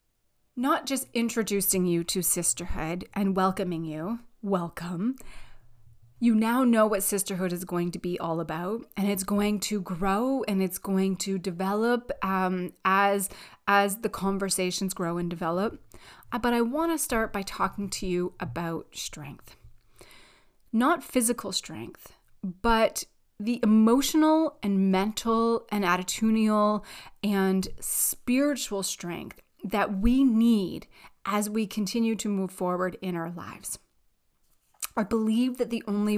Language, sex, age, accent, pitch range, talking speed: English, female, 30-49, American, 185-230 Hz, 135 wpm